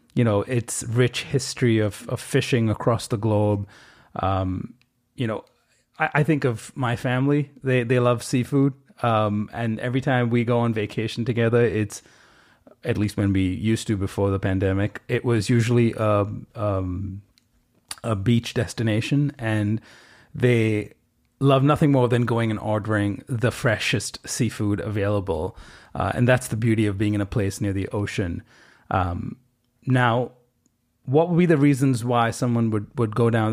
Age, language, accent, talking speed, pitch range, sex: 30-49, English, American, 160 wpm, 105-125 Hz, male